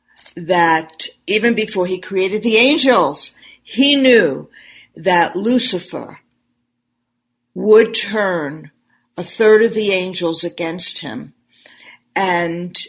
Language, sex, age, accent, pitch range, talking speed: English, female, 50-69, American, 165-215 Hz, 100 wpm